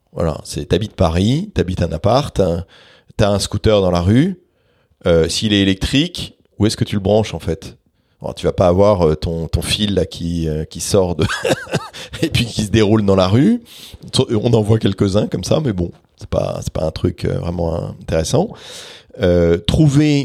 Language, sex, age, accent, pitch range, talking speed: English, male, 40-59, French, 90-120 Hz, 210 wpm